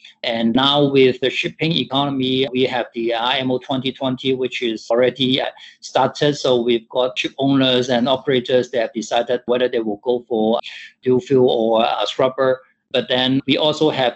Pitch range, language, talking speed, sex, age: 120-140 Hz, English, 180 wpm, male, 50-69